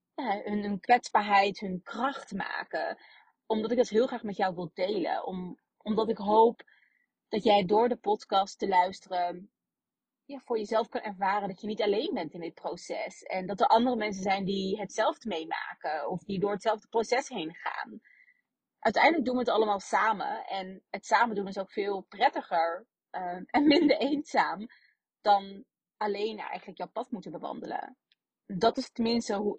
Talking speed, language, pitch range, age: 165 wpm, Dutch, 200-250 Hz, 30-49